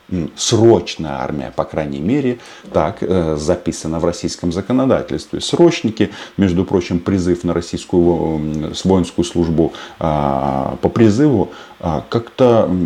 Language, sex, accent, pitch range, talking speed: Russian, male, native, 80-105 Hz, 100 wpm